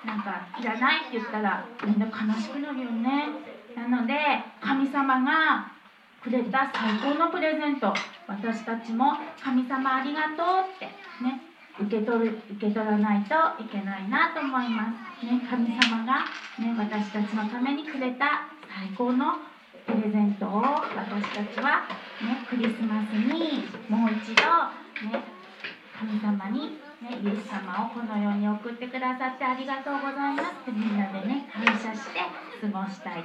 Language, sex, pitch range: Japanese, female, 215-275 Hz